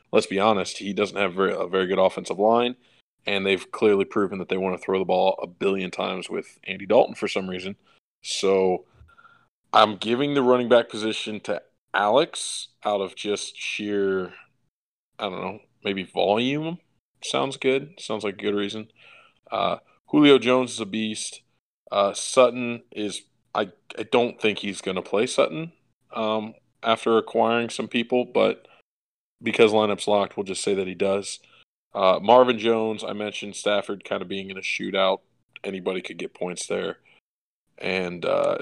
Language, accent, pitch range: English, American, 95-115 Hz